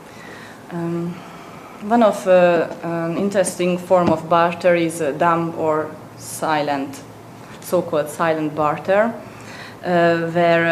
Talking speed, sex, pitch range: 105 wpm, female, 160-185 Hz